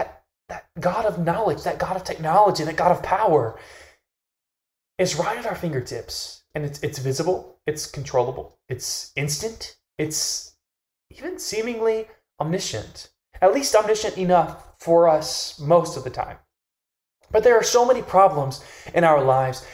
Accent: American